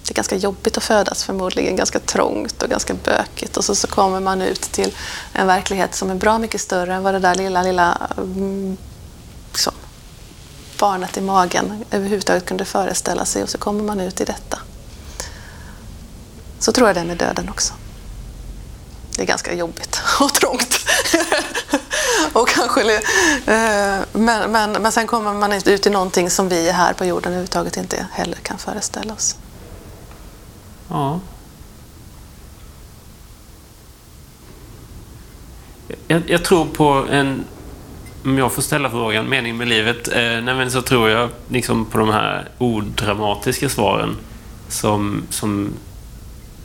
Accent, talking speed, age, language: native, 135 wpm, 30-49, Swedish